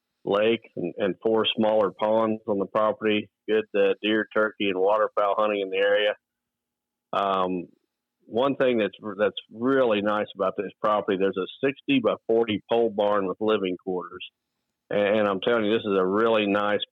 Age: 50-69